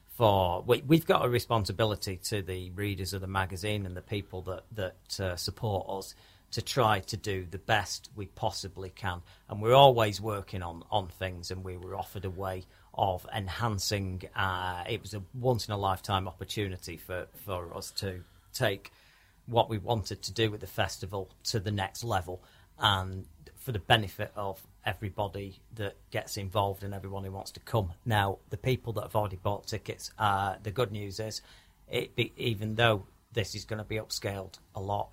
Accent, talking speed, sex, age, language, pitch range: British, 185 wpm, male, 40-59, English, 95-110 Hz